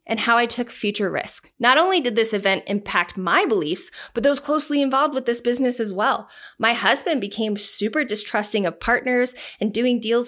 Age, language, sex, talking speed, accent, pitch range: 20-39, English, female, 195 wpm, American, 205-270 Hz